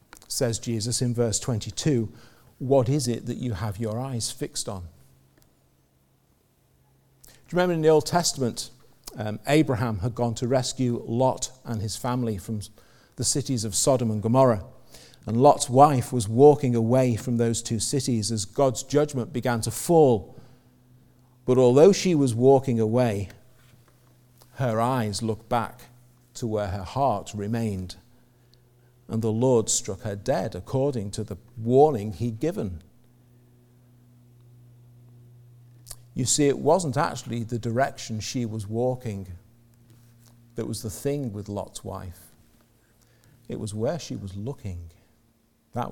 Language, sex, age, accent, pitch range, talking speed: English, male, 50-69, British, 110-125 Hz, 140 wpm